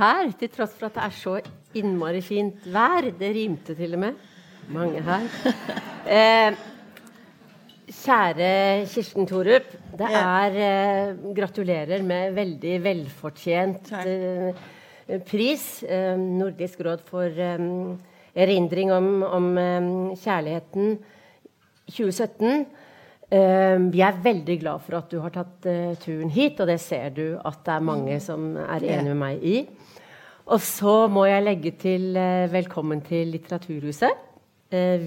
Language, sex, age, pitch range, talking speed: English, female, 40-59, 175-205 Hz, 135 wpm